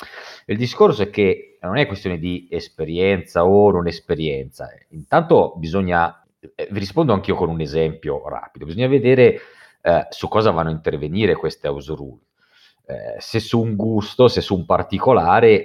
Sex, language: male, Italian